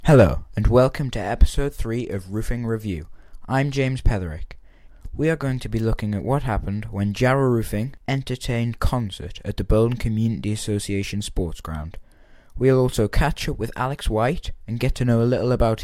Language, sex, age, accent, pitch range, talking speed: English, male, 20-39, British, 100-125 Hz, 180 wpm